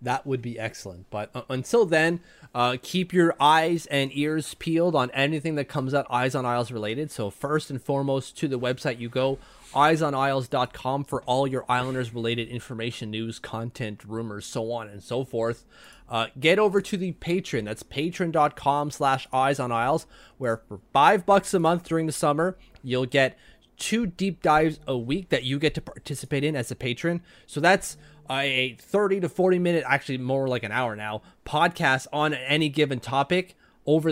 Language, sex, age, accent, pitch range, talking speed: English, male, 30-49, American, 125-160 Hz, 180 wpm